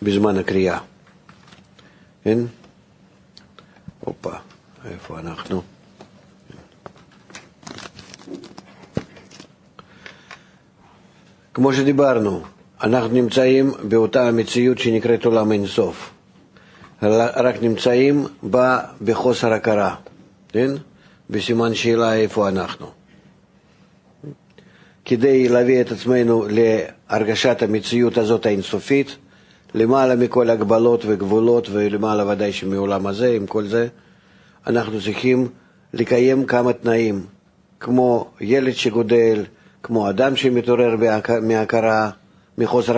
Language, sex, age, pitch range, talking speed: Hebrew, male, 50-69, 105-125 Hz, 80 wpm